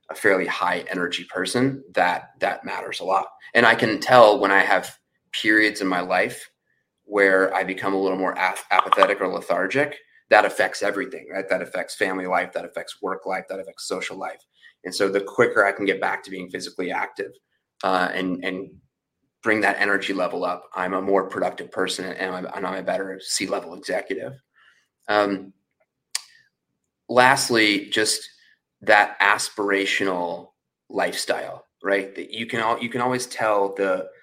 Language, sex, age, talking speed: English, male, 30-49, 165 wpm